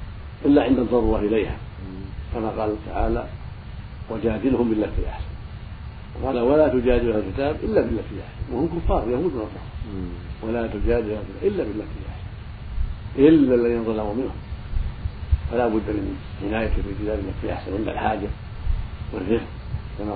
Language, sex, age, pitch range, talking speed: Arabic, male, 70-89, 95-115 Hz, 125 wpm